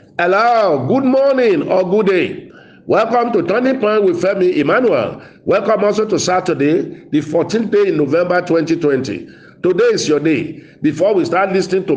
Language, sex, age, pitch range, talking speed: English, male, 50-69, 150-200 Hz, 160 wpm